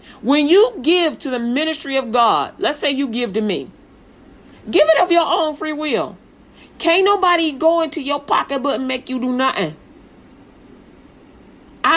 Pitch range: 225-315 Hz